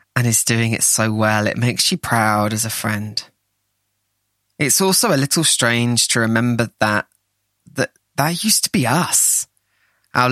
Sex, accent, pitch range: male, British, 105-120 Hz